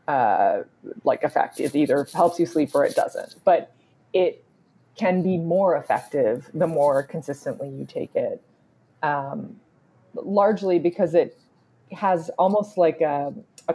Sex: female